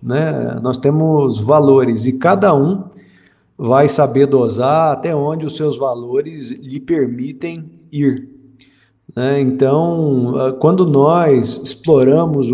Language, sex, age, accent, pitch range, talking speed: Portuguese, male, 50-69, Brazilian, 125-155 Hz, 110 wpm